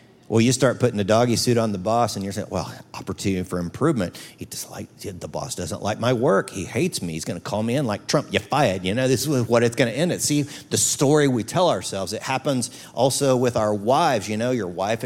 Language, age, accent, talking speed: English, 50-69, American, 245 wpm